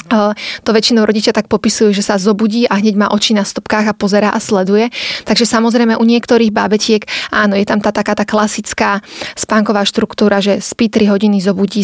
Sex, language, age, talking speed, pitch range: female, Slovak, 20-39, 180 wpm, 200-225 Hz